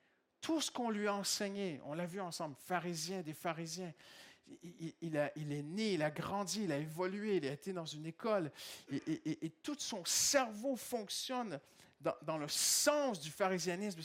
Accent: French